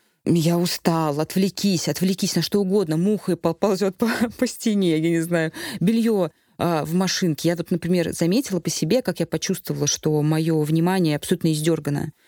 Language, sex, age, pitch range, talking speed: Russian, female, 20-39, 155-195 Hz, 170 wpm